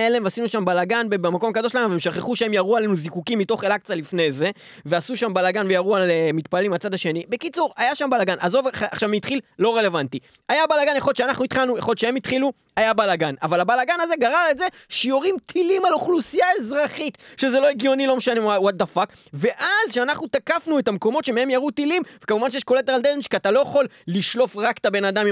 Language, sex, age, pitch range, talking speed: Hebrew, male, 20-39, 185-260 Hz, 175 wpm